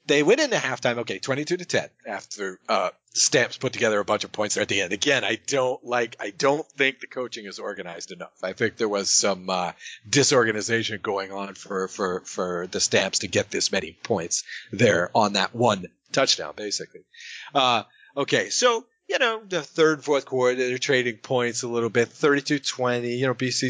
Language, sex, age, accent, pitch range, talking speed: English, male, 40-59, American, 115-185 Hz, 200 wpm